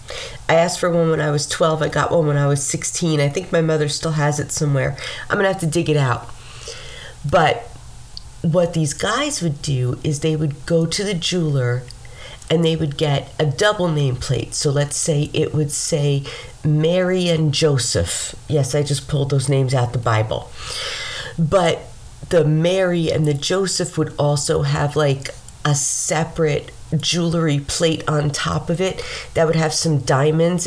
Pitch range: 140-170 Hz